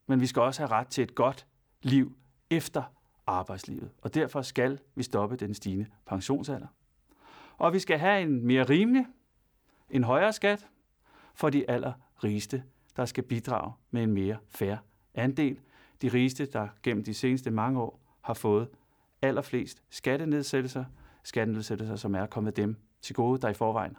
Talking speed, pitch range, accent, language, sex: 160 wpm, 120-170 Hz, native, Danish, male